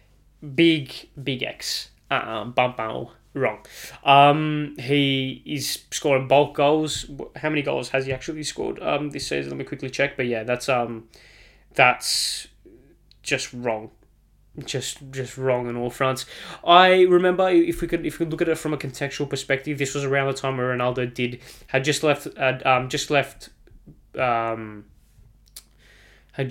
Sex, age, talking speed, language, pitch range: male, 10-29, 165 wpm, English, 120-145 Hz